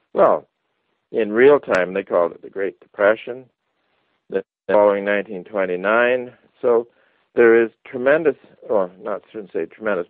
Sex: male